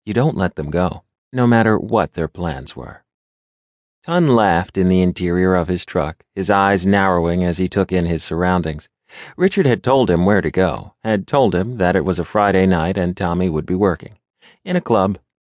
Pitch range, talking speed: 85-105 Hz, 200 wpm